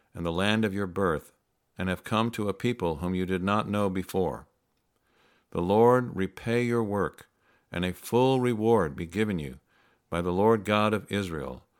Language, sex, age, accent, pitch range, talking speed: English, male, 60-79, American, 90-105 Hz, 185 wpm